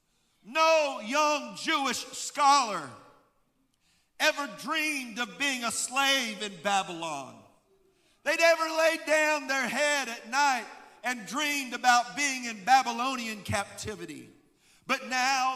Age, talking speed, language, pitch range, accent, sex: 50-69, 110 wpm, English, 235-285 Hz, American, male